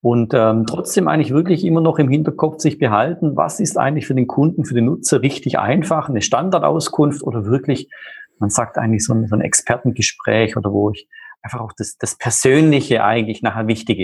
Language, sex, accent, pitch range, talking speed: German, male, German, 110-150 Hz, 190 wpm